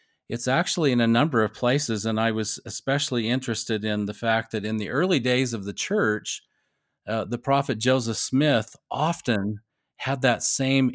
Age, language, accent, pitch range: 40-59, English, American, 110-130 Hz